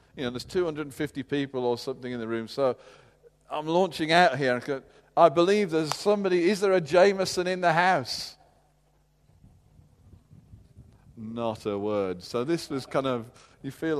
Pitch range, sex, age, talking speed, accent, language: 110-155 Hz, male, 40-59, 160 wpm, British, English